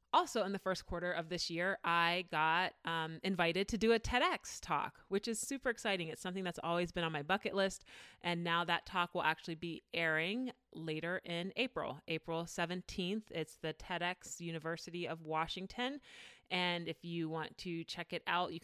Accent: American